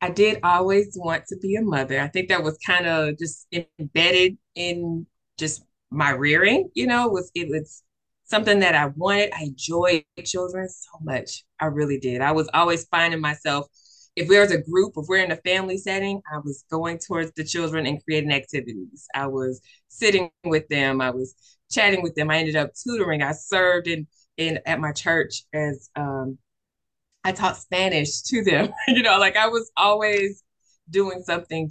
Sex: female